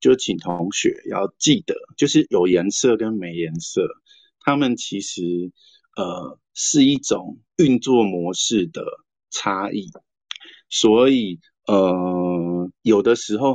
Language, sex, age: Chinese, male, 50-69